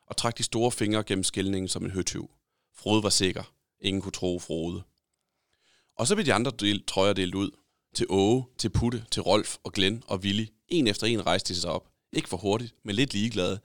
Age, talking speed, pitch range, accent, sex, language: 30-49, 215 wpm, 95-115 Hz, native, male, Danish